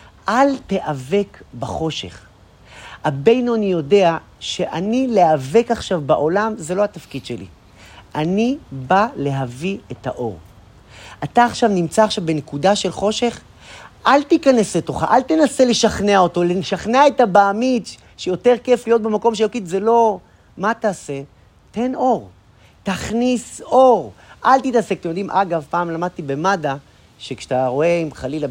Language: Hebrew